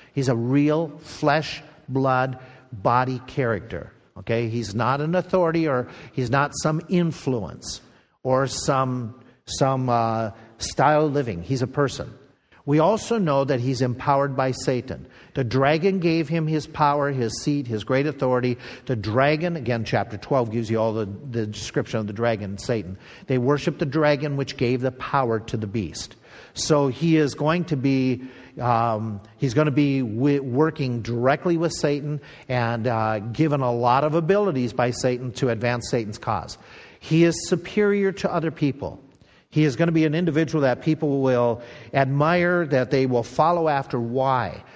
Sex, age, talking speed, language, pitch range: male, 50-69, 165 wpm, English, 120-155 Hz